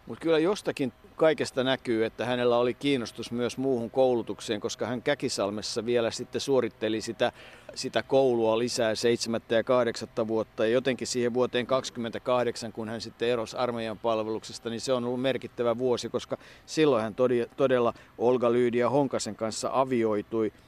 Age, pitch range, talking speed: 50-69, 115-135 Hz, 155 wpm